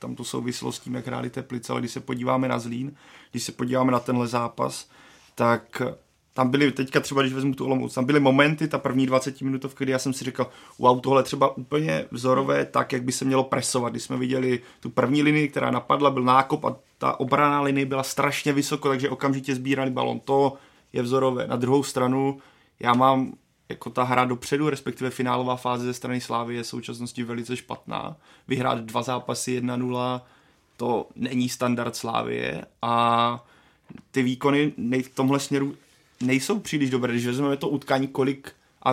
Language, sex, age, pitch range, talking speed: Czech, male, 30-49, 125-135 Hz, 190 wpm